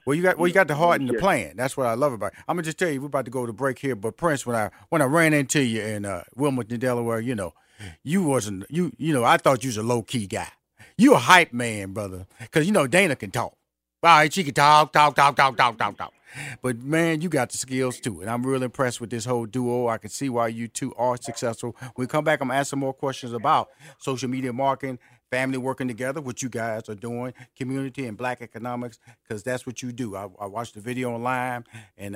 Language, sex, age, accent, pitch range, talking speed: English, male, 40-59, American, 115-145 Hz, 260 wpm